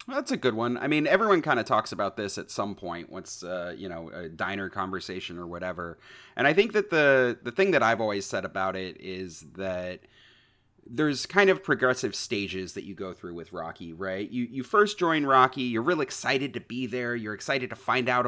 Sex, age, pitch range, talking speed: male, 30-49, 95-135 Hz, 220 wpm